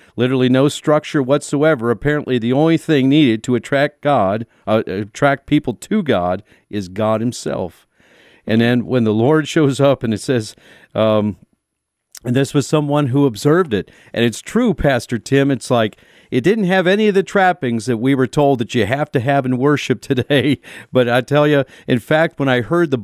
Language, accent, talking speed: English, American, 195 wpm